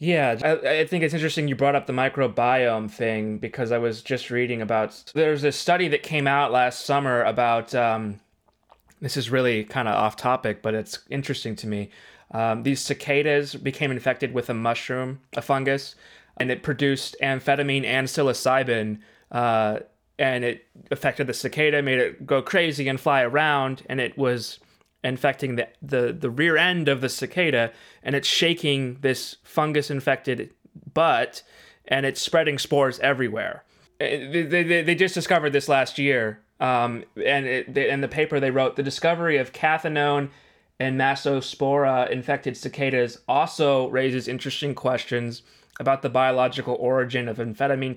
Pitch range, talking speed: 125-145 Hz, 155 wpm